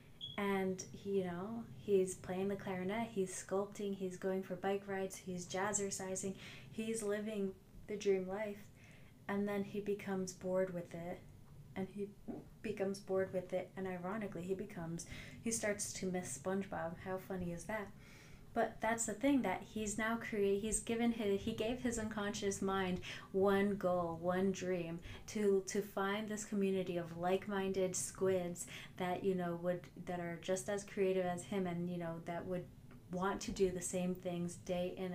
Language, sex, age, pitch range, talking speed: English, female, 30-49, 180-200 Hz, 170 wpm